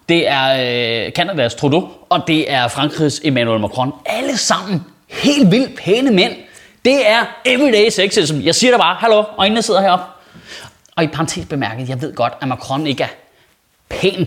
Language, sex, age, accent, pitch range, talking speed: Danish, male, 30-49, native, 140-190 Hz, 170 wpm